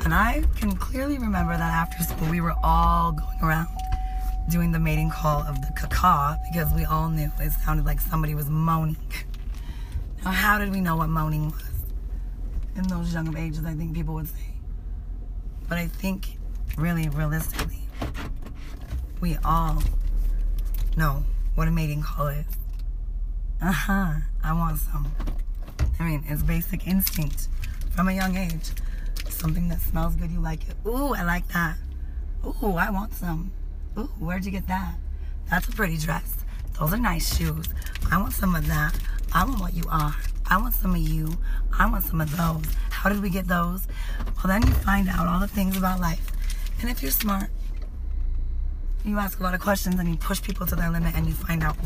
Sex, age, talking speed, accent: female, 20-39, 185 wpm, American